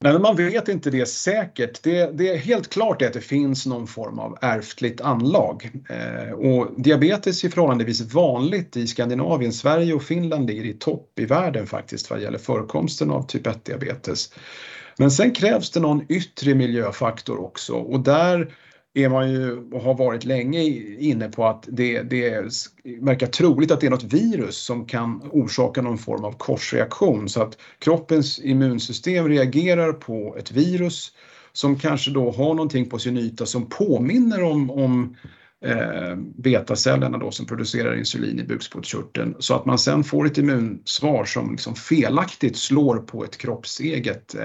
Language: Swedish